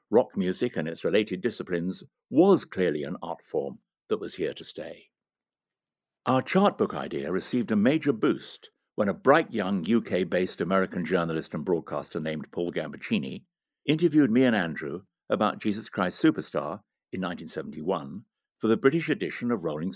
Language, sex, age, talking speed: English, male, 60-79, 155 wpm